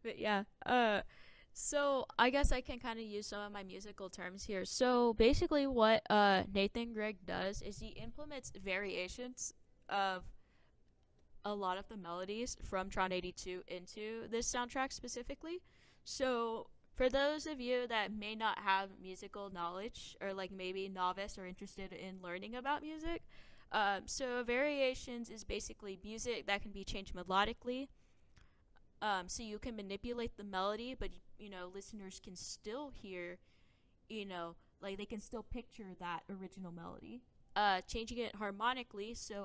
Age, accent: 10-29, American